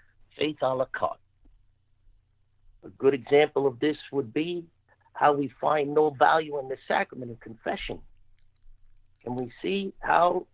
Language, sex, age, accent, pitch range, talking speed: English, male, 60-79, American, 110-140 Hz, 140 wpm